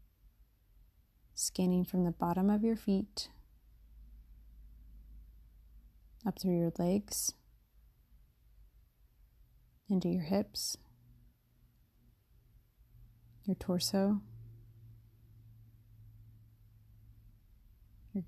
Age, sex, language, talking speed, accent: 30-49, female, English, 55 wpm, American